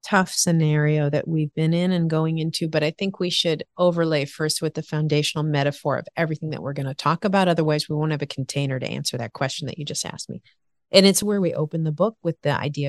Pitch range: 155-195 Hz